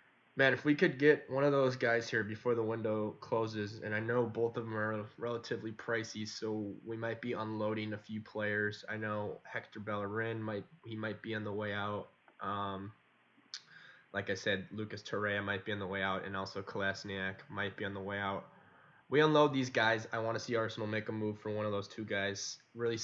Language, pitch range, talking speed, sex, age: English, 105-115 Hz, 215 wpm, male, 10-29